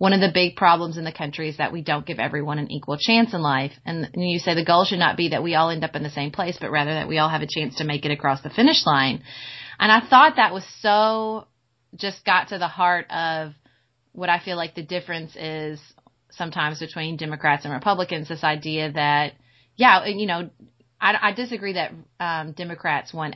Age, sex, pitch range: 30-49, female, 155-205 Hz